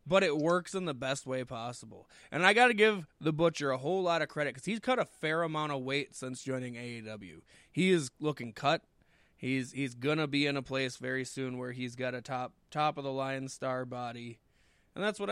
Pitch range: 125-185 Hz